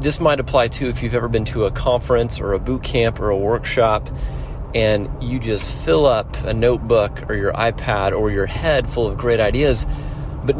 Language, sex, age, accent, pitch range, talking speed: English, male, 30-49, American, 110-140 Hz, 205 wpm